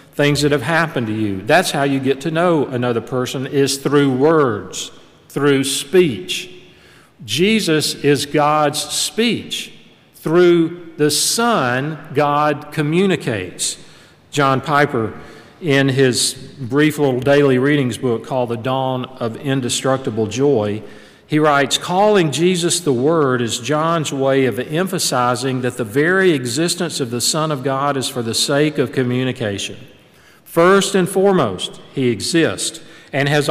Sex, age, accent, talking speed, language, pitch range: male, 50-69, American, 135 wpm, English, 135-170 Hz